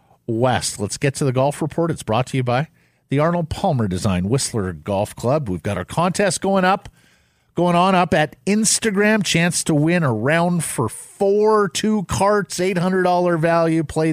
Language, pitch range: English, 110-160 Hz